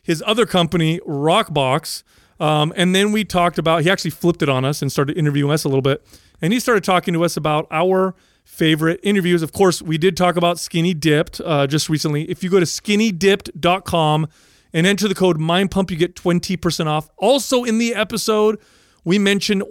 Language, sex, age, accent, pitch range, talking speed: English, male, 30-49, American, 155-195 Hz, 200 wpm